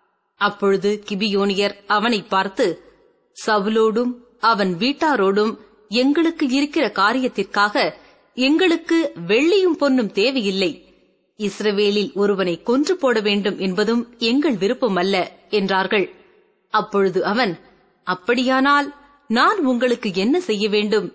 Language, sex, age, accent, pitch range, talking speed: Tamil, female, 30-49, native, 205-285 Hz, 90 wpm